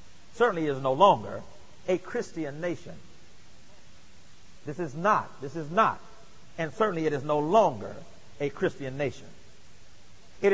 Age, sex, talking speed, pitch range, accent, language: 40-59, male, 130 wpm, 150-225 Hz, American, English